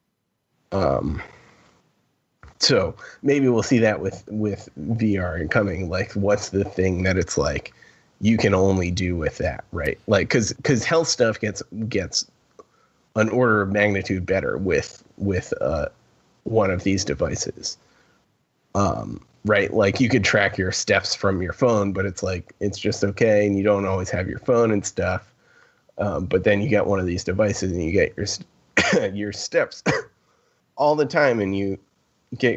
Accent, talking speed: American, 170 wpm